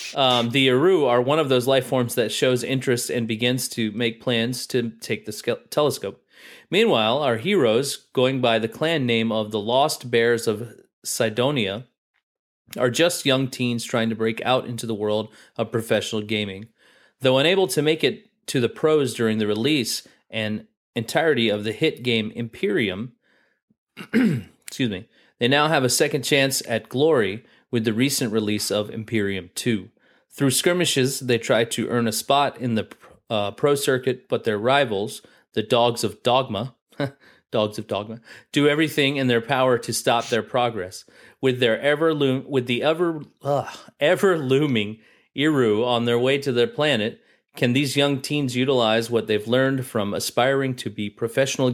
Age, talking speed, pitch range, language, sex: 30-49, 165 wpm, 110-135 Hz, English, male